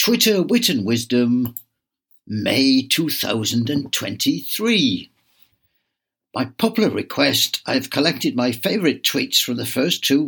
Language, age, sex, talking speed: English, 60-79, male, 110 wpm